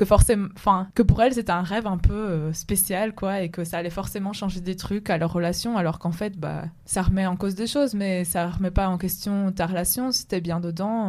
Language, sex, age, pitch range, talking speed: French, female, 20-39, 175-210 Hz, 250 wpm